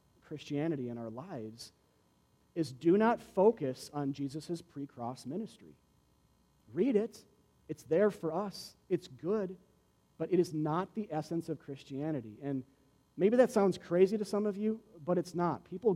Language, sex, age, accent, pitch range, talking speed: English, male, 40-59, American, 125-190 Hz, 155 wpm